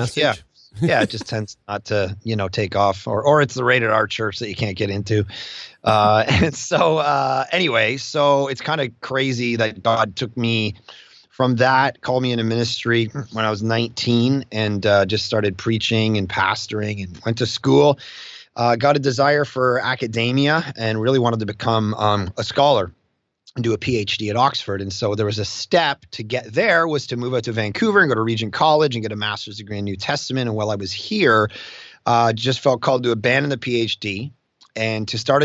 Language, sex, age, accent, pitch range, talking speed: English, male, 30-49, American, 110-130 Hz, 205 wpm